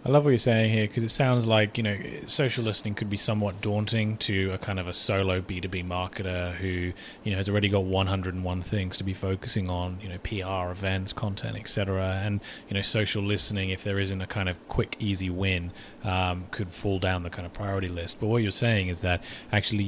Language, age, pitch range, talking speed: English, 20-39, 95-110 Hz, 225 wpm